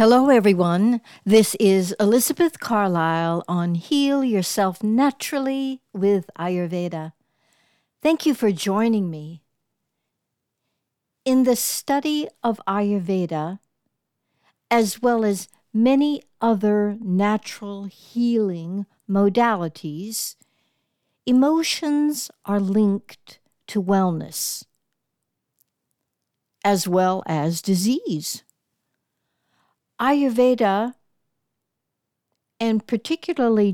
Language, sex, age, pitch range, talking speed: English, female, 60-79, 180-240 Hz, 75 wpm